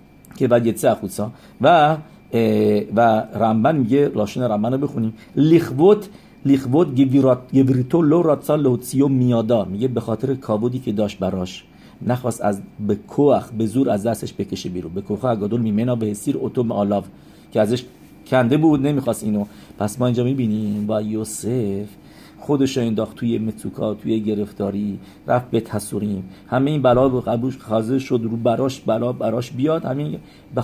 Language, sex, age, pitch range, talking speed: English, male, 50-69, 105-135 Hz, 150 wpm